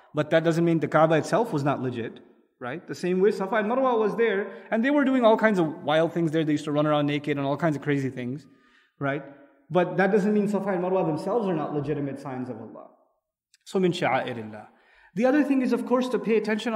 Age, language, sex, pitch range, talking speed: 20-39, English, male, 140-185 Hz, 245 wpm